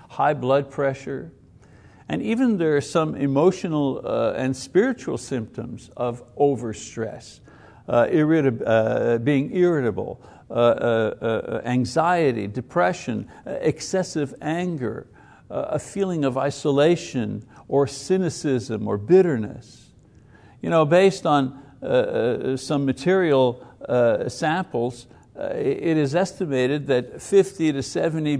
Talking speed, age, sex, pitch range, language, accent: 115 wpm, 60-79, male, 125-165 Hz, English, American